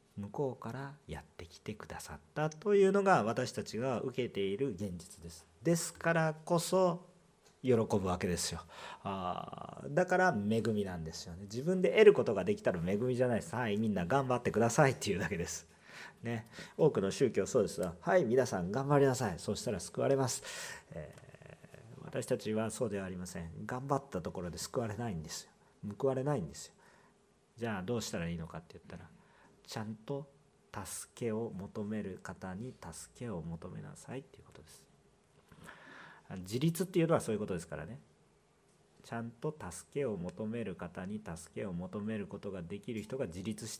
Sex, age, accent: male, 40-59, native